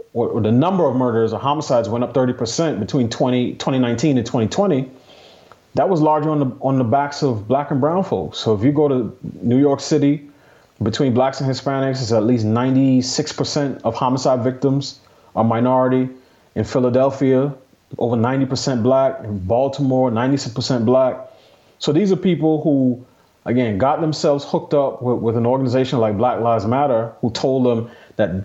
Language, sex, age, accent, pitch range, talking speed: English, male, 30-49, American, 120-140 Hz, 185 wpm